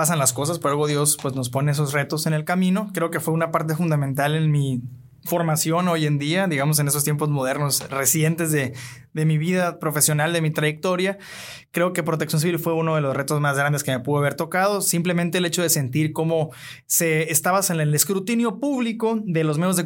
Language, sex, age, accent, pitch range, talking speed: Spanish, male, 20-39, Mexican, 150-185 Hz, 210 wpm